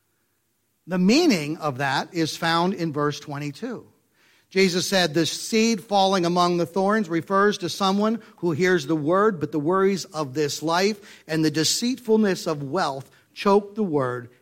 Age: 50-69